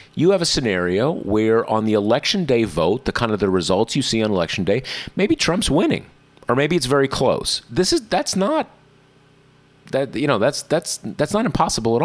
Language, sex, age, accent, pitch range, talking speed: English, male, 30-49, American, 105-140 Hz, 205 wpm